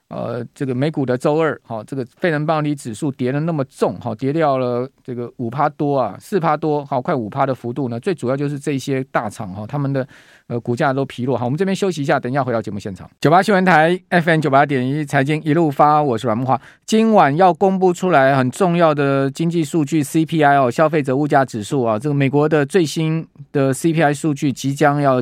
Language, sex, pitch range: Chinese, male, 130-165 Hz